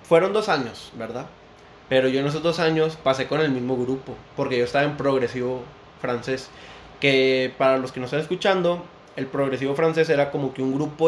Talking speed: 195 wpm